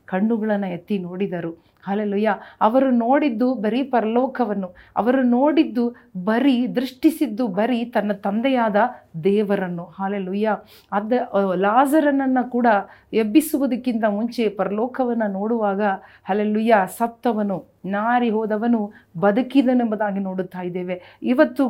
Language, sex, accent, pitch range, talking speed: Kannada, female, native, 205-255 Hz, 90 wpm